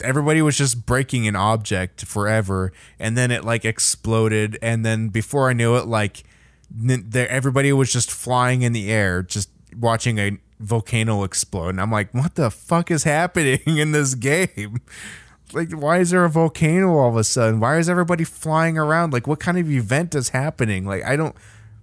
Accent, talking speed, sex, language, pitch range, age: American, 185 wpm, male, English, 105-135 Hz, 20-39